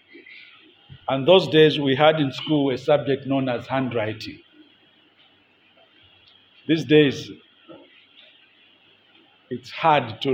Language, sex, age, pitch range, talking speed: English, male, 50-69, 155-255 Hz, 100 wpm